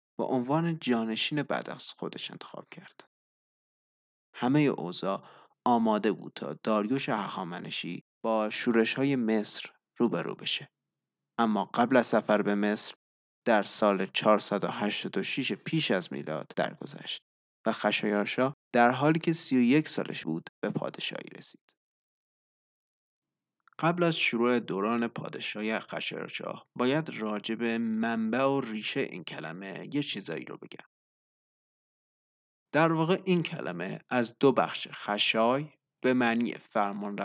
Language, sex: Persian, male